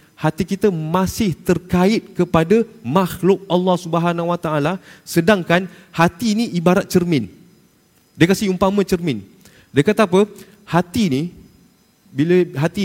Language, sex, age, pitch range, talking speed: Malay, male, 30-49, 170-220 Hz, 120 wpm